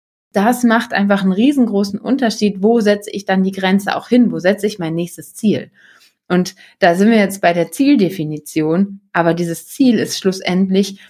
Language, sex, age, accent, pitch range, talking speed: German, female, 20-39, German, 175-215 Hz, 180 wpm